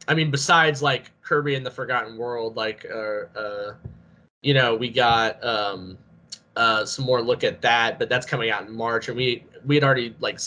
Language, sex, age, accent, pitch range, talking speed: English, male, 10-29, American, 120-155 Hz, 200 wpm